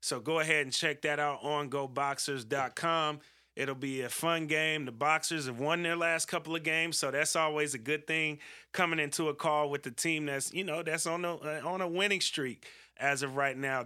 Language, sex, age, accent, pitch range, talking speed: English, male, 30-49, American, 140-165 Hz, 215 wpm